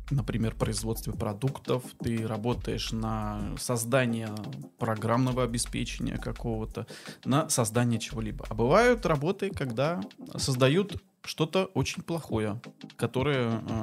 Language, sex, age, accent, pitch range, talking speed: Russian, male, 20-39, native, 115-150 Hz, 95 wpm